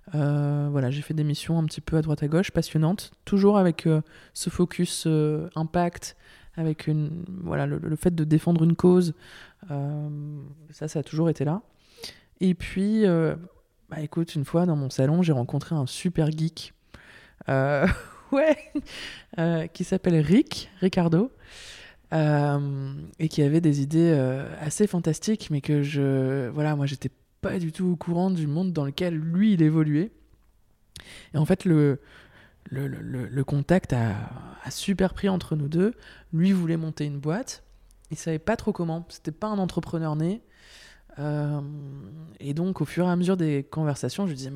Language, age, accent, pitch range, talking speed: French, 20-39, French, 145-175 Hz, 175 wpm